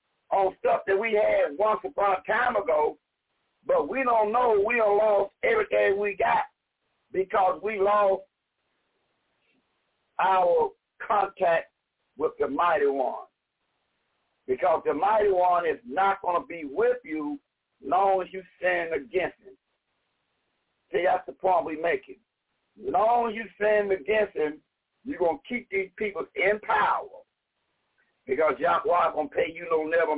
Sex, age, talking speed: male, 60-79, 150 wpm